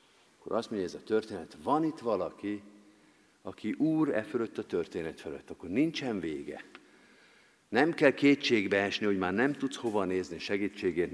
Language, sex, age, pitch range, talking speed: Hungarian, male, 50-69, 100-145 Hz, 160 wpm